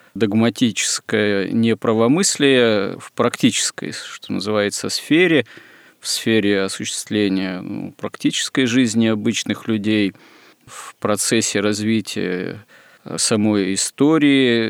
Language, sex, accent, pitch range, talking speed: Russian, male, native, 105-125 Hz, 80 wpm